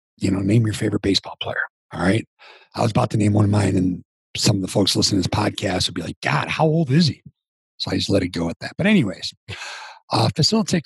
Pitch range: 95-140 Hz